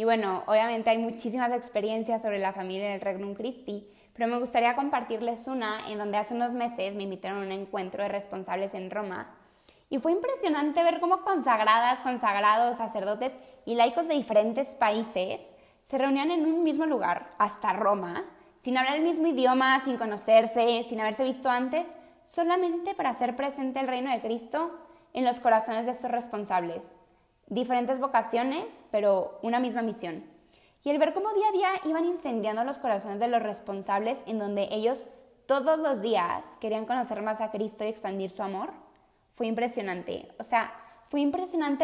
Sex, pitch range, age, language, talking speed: female, 210-270 Hz, 20-39, Spanish, 170 wpm